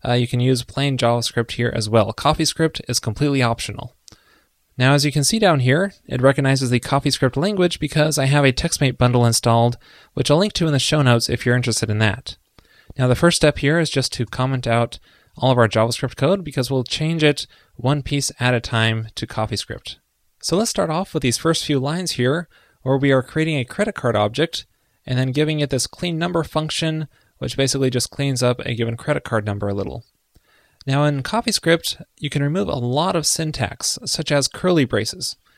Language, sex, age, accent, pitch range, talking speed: English, male, 20-39, American, 120-150 Hz, 205 wpm